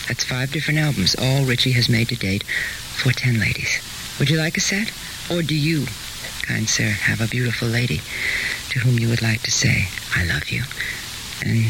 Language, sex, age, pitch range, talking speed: English, female, 60-79, 110-135 Hz, 195 wpm